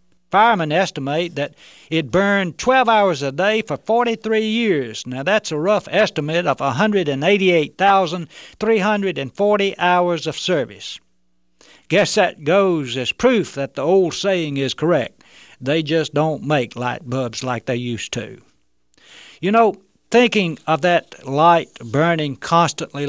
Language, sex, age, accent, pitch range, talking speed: English, male, 60-79, American, 125-175 Hz, 135 wpm